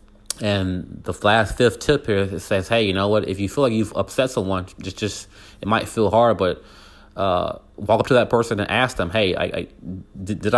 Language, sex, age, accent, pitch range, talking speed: English, male, 30-49, American, 95-110 Hz, 225 wpm